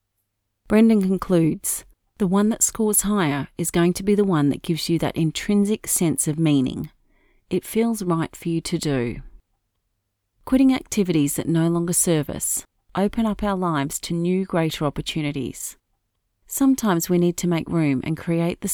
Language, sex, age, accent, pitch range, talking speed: English, female, 40-59, Australian, 145-195 Hz, 165 wpm